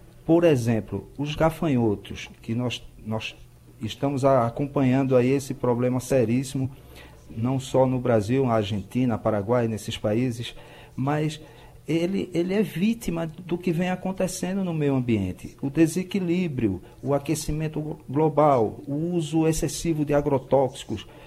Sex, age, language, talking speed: male, 50-69, Portuguese, 125 wpm